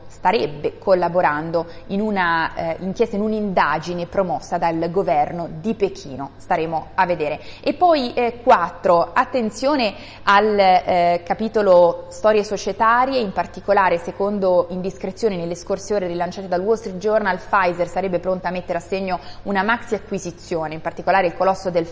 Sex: female